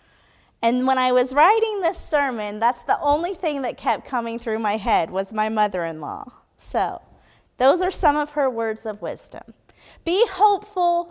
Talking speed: 165 wpm